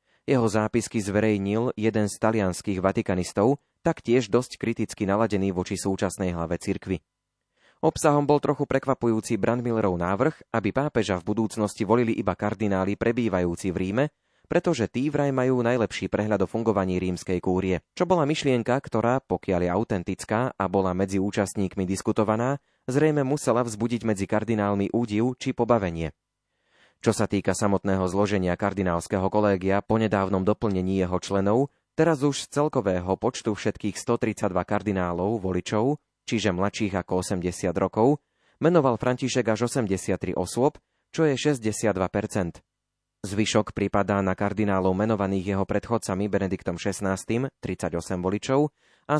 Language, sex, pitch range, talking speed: Slovak, male, 95-120 Hz, 130 wpm